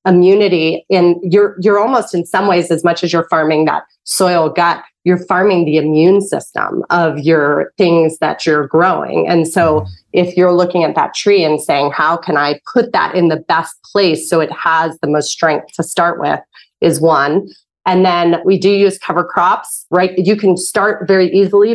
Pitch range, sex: 160-185 Hz, female